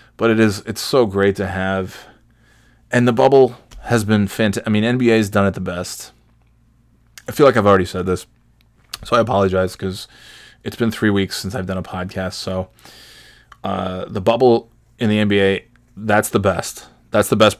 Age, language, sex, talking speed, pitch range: 20-39, English, male, 190 wpm, 95-110 Hz